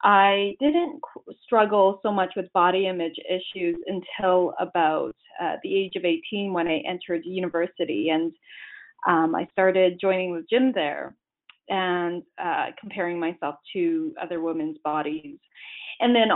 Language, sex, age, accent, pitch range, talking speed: English, female, 20-39, American, 175-210 Hz, 140 wpm